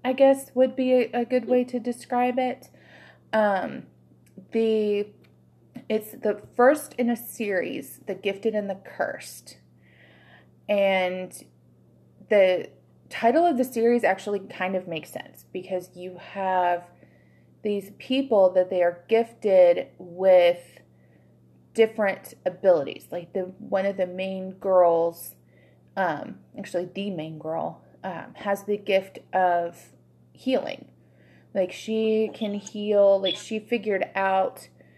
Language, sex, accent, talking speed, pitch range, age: English, female, American, 125 wpm, 165-205 Hz, 30-49